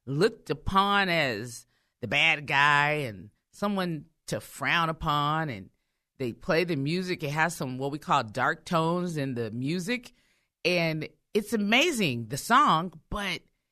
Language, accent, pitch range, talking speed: English, American, 150-245 Hz, 145 wpm